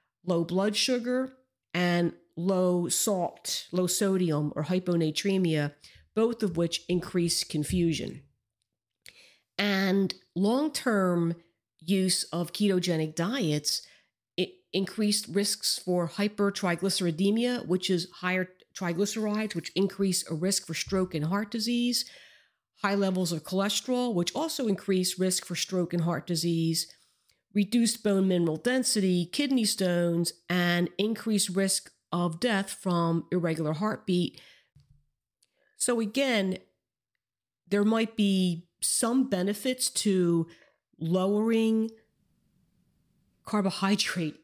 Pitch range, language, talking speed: 170-210 Hz, English, 100 wpm